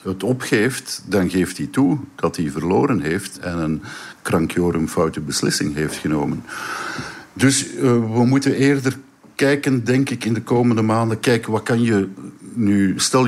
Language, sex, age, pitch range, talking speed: Dutch, male, 50-69, 95-120 Hz, 155 wpm